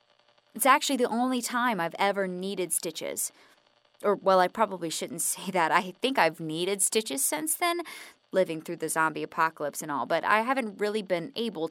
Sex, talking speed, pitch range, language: female, 185 wpm, 180-230 Hz, English